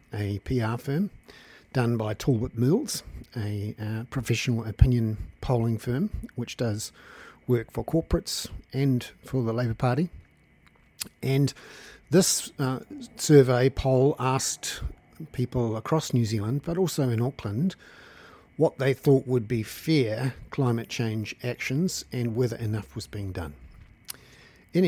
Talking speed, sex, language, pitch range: 130 wpm, male, English, 110-135 Hz